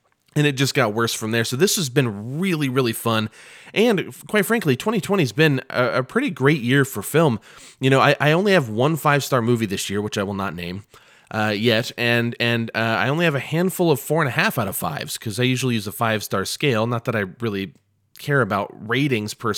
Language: English